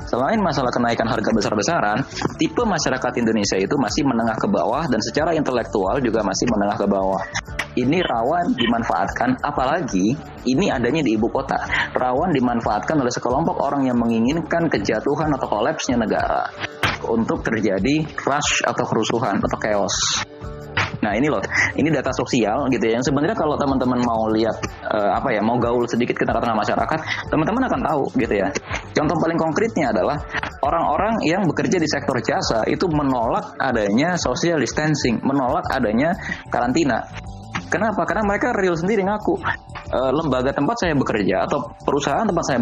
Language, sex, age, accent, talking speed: Indonesian, male, 20-39, native, 155 wpm